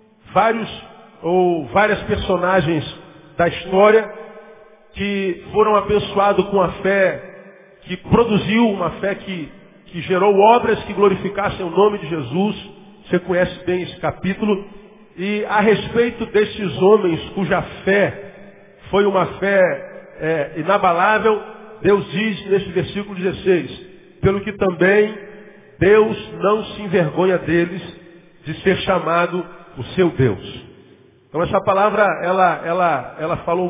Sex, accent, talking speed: male, Brazilian, 120 wpm